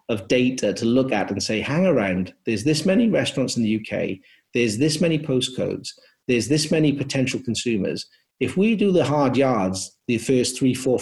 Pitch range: 120-150 Hz